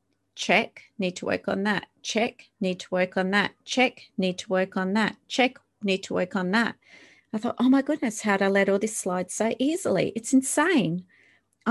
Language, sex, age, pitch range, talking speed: English, female, 30-49, 185-245 Hz, 200 wpm